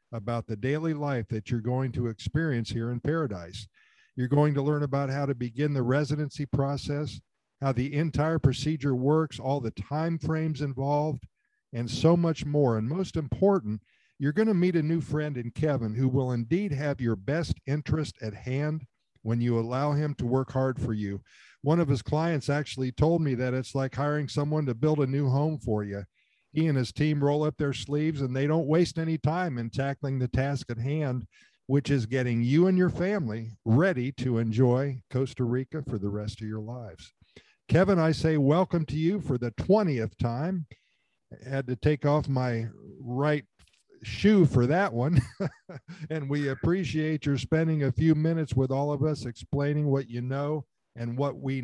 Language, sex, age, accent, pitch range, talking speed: English, male, 50-69, American, 120-155 Hz, 190 wpm